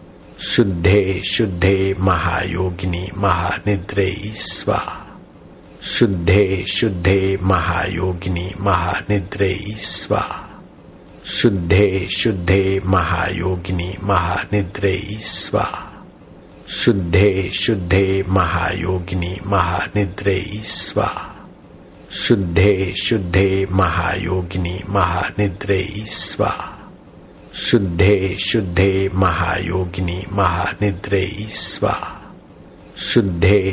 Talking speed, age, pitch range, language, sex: 55 wpm, 60-79, 90-100 Hz, Hindi, male